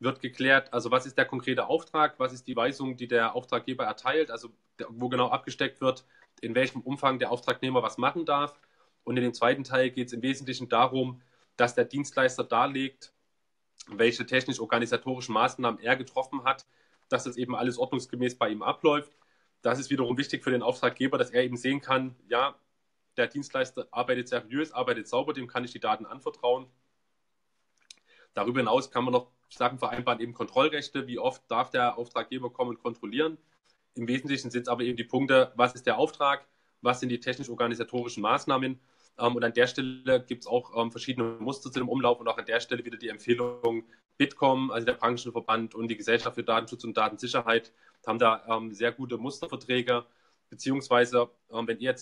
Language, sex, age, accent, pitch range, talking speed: German, male, 20-39, German, 120-130 Hz, 180 wpm